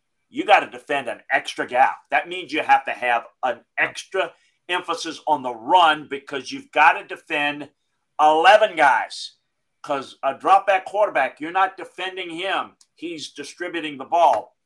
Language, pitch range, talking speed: English, 135-175 Hz, 155 wpm